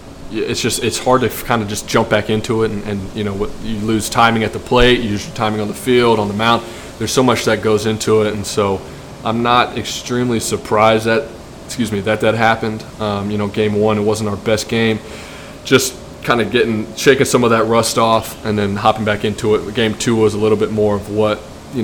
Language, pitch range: English, 100-110 Hz